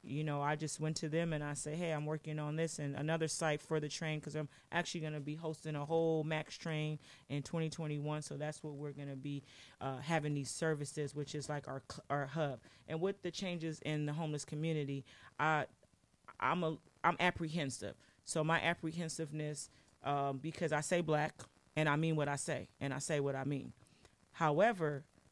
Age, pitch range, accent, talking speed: 30-49, 145-160 Hz, American, 200 wpm